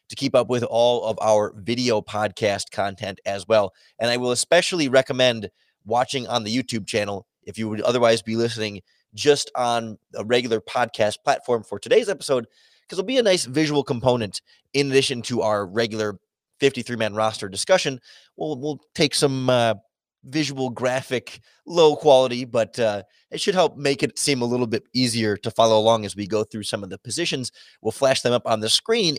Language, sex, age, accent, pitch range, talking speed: English, male, 20-39, American, 110-135 Hz, 185 wpm